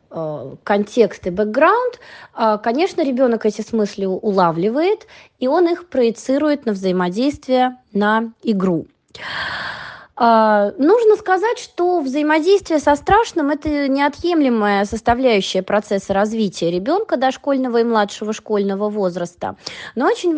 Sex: female